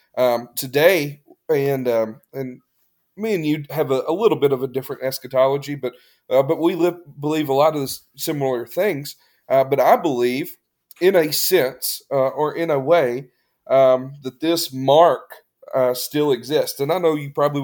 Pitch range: 125-150 Hz